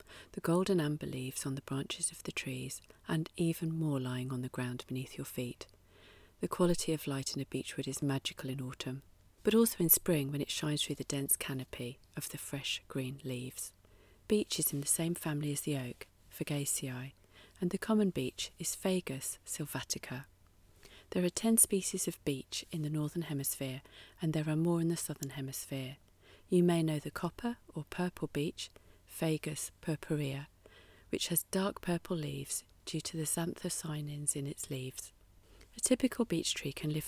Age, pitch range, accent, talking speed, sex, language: 40-59, 130-170 Hz, British, 180 wpm, female, English